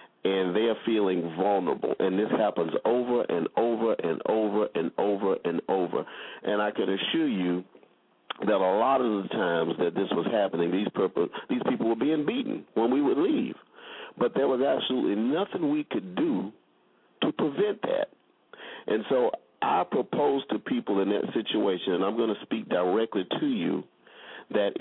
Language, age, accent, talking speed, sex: English, 50-69, American, 170 wpm, male